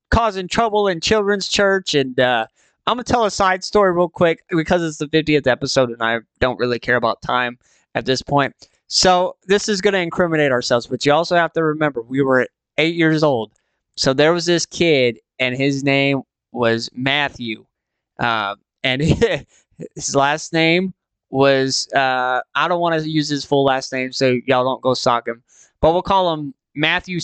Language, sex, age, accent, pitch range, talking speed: English, male, 20-39, American, 130-175 Hz, 190 wpm